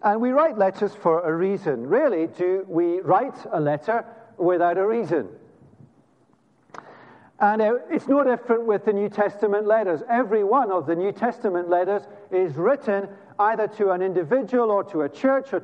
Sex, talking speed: male, 165 wpm